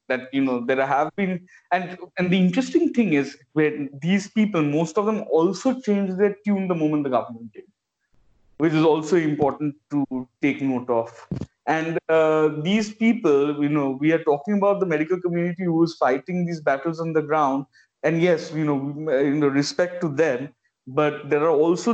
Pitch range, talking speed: 145-170 Hz, 185 wpm